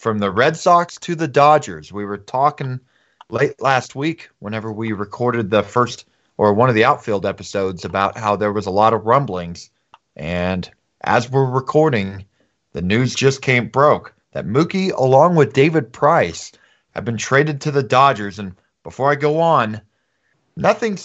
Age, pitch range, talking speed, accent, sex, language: 30-49, 105-145 Hz, 170 wpm, American, male, English